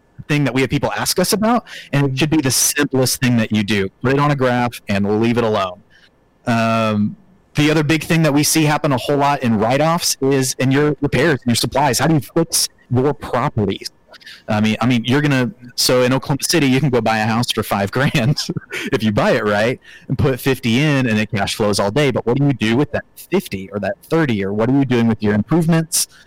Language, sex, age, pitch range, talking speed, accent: English, male, 30-49, 110-145 Hz, 240 wpm, American